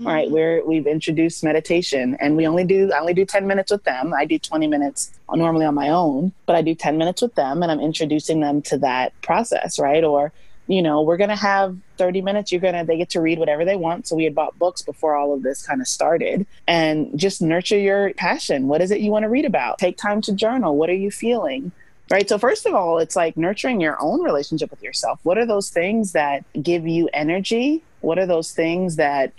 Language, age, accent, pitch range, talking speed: English, 30-49, American, 155-195 Hz, 235 wpm